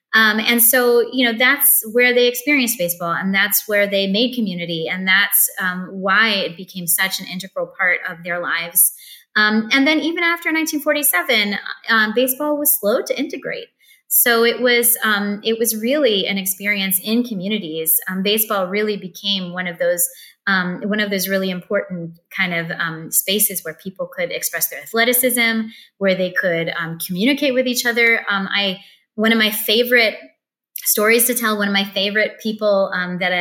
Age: 20-39